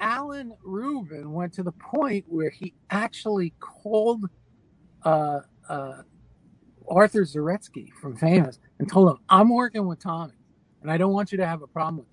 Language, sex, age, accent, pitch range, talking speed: English, male, 50-69, American, 140-190 Hz, 165 wpm